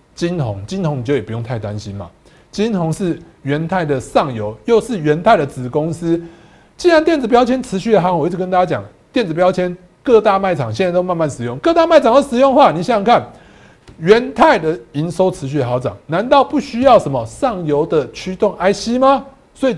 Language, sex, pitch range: Chinese, male, 140-225 Hz